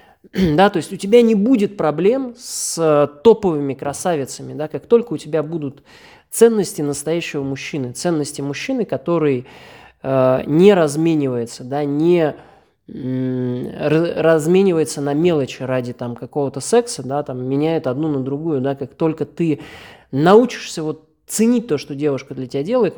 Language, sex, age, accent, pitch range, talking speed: Russian, male, 20-39, native, 135-180 Hz, 140 wpm